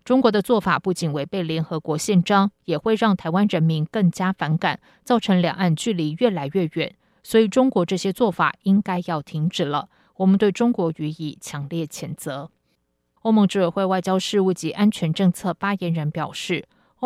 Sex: female